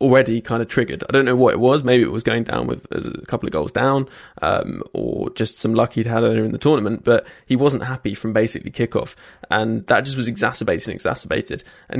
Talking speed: 230 wpm